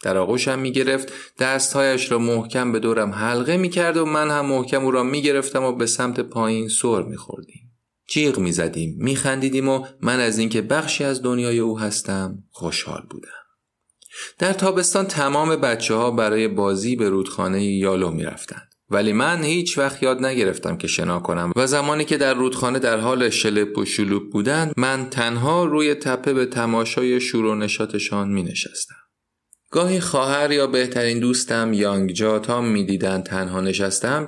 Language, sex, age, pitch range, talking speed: Persian, male, 30-49, 110-140 Hz, 155 wpm